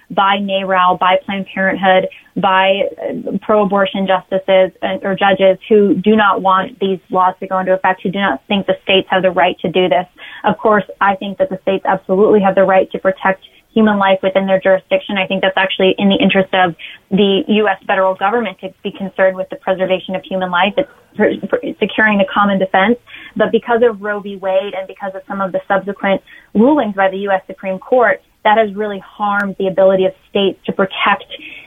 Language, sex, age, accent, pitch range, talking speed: English, female, 20-39, American, 190-210 Hz, 200 wpm